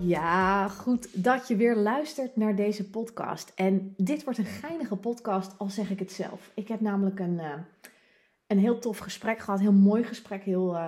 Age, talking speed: 30-49, 195 wpm